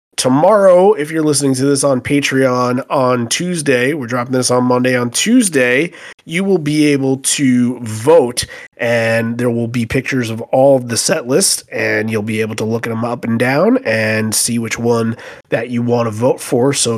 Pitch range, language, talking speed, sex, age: 110-130 Hz, English, 195 wpm, male, 30-49